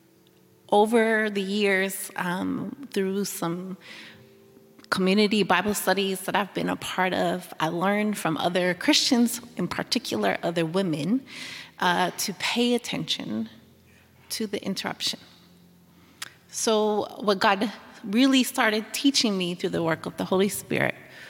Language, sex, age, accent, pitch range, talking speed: English, female, 30-49, American, 180-225 Hz, 125 wpm